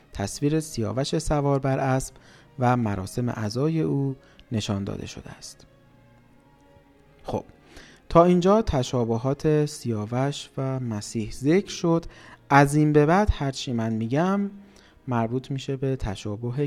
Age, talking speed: 30-49, 120 wpm